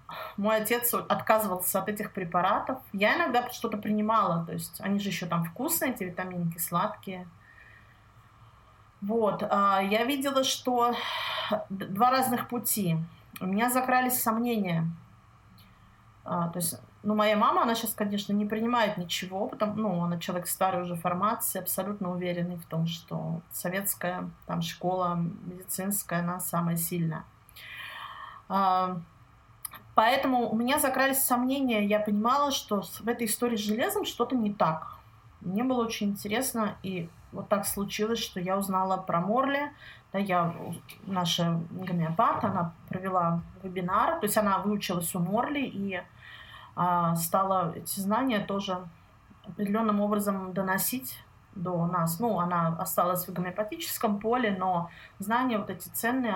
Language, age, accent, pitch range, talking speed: Russian, 30-49, native, 175-220 Hz, 130 wpm